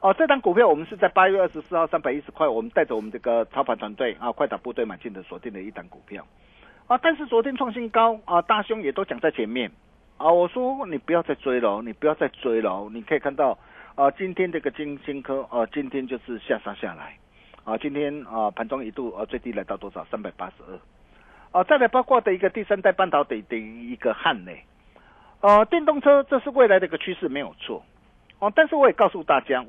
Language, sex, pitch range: Chinese, male, 150-245 Hz